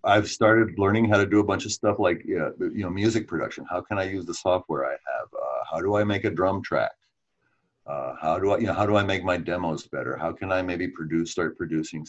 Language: English